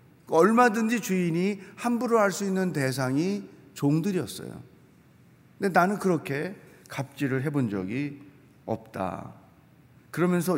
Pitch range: 135-185 Hz